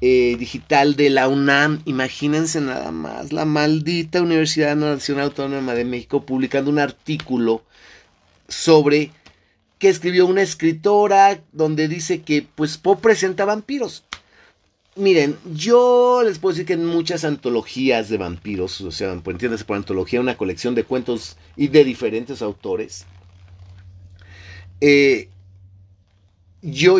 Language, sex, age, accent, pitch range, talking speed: Spanish, male, 40-59, Mexican, 100-160 Hz, 125 wpm